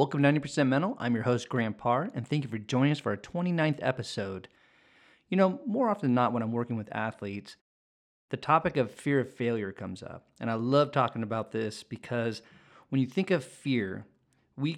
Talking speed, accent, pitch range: 205 wpm, American, 120-145 Hz